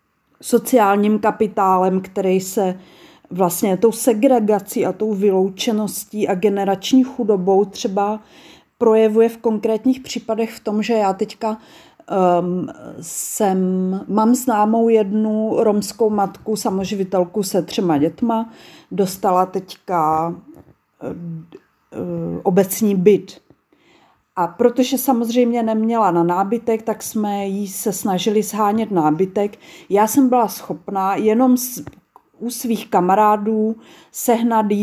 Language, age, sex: Czech, 40-59, female